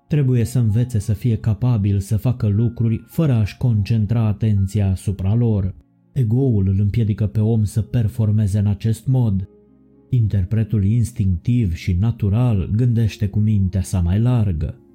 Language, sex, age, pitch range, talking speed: Romanian, male, 30-49, 100-120 Hz, 140 wpm